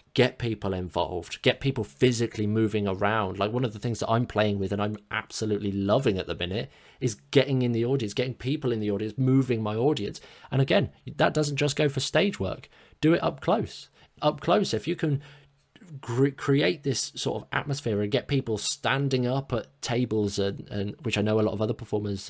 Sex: male